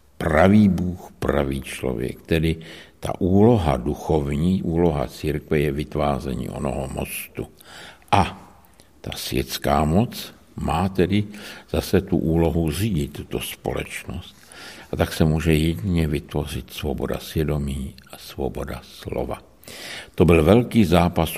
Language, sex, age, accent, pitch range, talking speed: Czech, male, 60-79, native, 70-85 Hz, 115 wpm